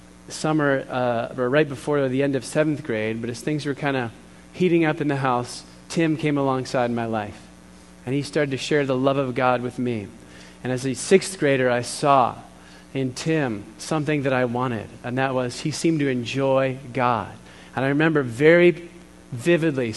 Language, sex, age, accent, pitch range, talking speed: English, male, 30-49, American, 120-150 Hz, 190 wpm